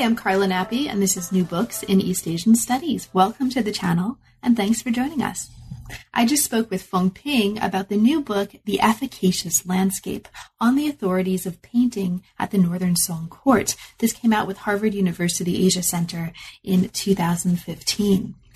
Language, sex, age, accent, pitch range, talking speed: English, female, 30-49, American, 180-225 Hz, 175 wpm